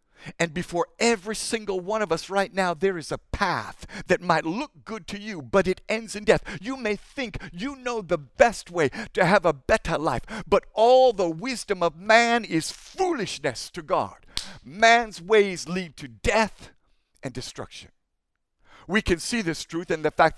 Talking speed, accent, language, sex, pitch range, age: 185 wpm, American, English, male, 160-220 Hz, 60-79